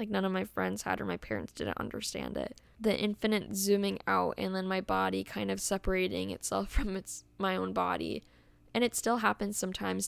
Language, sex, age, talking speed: English, female, 10-29, 200 wpm